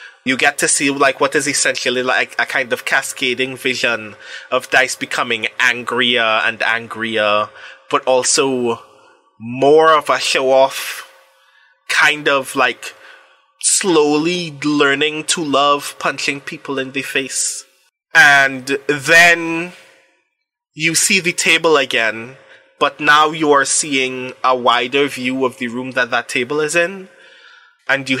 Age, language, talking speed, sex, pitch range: 20-39, English, 135 wpm, male, 130-165 Hz